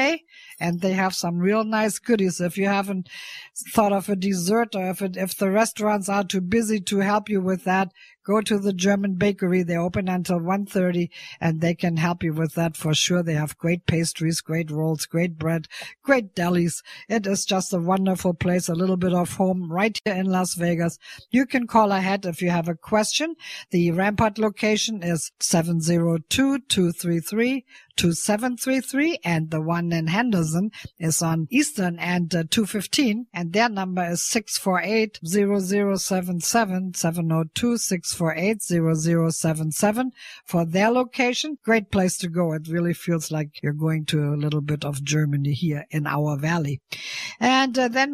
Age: 50-69